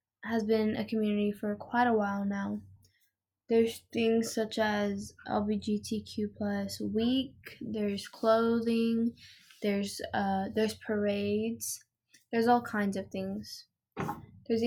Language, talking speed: English, 115 wpm